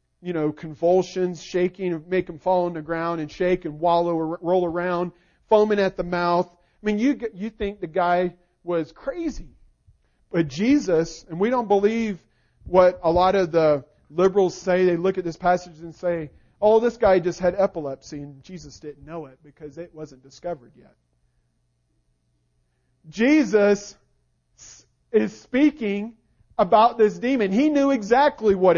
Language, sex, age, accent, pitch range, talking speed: English, male, 40-59, American, 165-215 Hz, 160 wpm